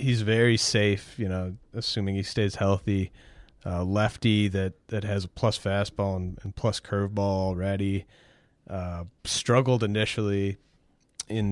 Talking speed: 135 wpm